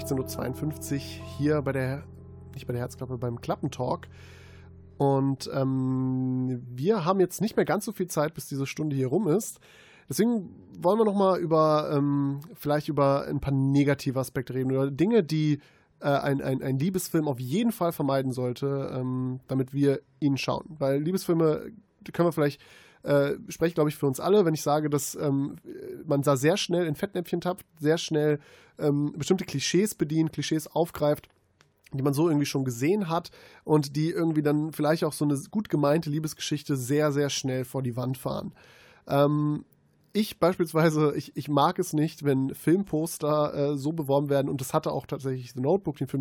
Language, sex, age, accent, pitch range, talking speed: German, male, 20-39, German, 135-160 Hz, 185 wpm